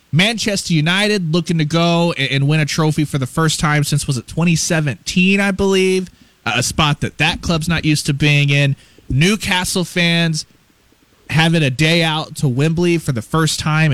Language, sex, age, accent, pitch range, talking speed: English, male, 20-39, American, 125-160 Hz, 185 wpm